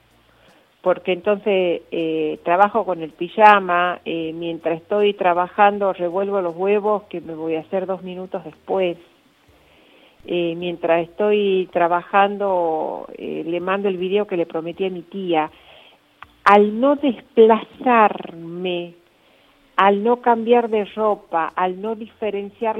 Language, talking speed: Spanish, 125 wpm